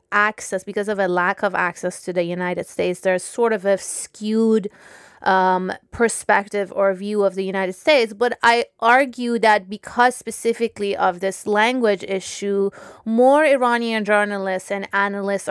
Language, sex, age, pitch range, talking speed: English, female, 20-39, 185-215 Hz, 150 wpm